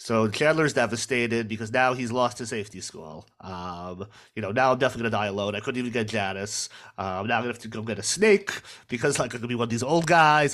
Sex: male